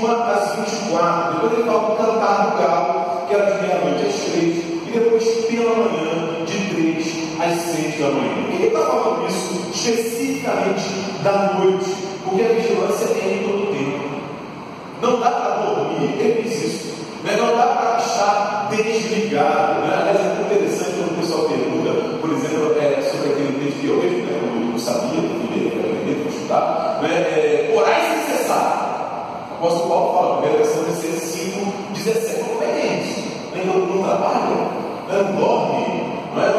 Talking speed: 160 wpm